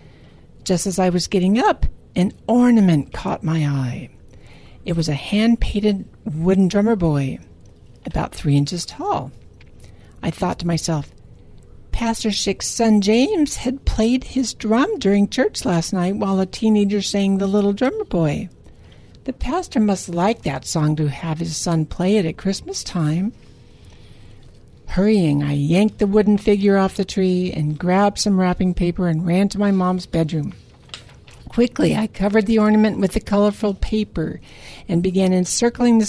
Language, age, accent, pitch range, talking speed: English, 60-79, American, 165-210 Hz, 155 wpm